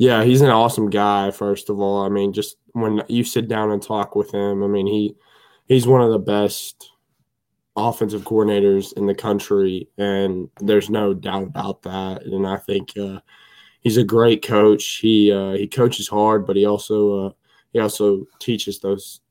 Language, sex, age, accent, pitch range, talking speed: English, male, 20-39, American, 95-105 Hz, 185 wpm